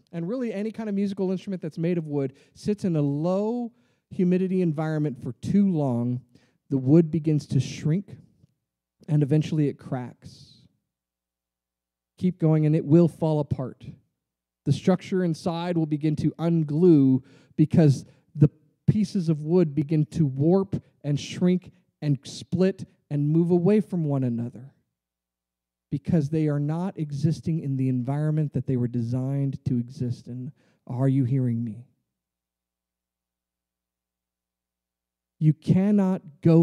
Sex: male